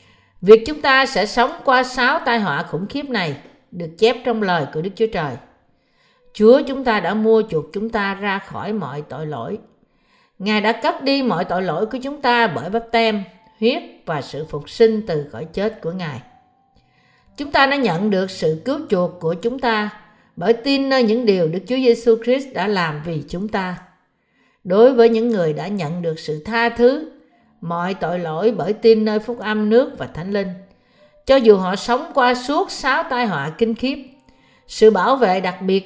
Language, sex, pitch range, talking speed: Vietnamese, female, 175-240 Hz, 200 wpm